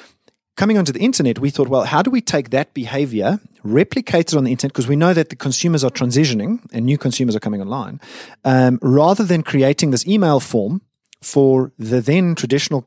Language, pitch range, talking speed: English, 110-145 Hz, 200 wpm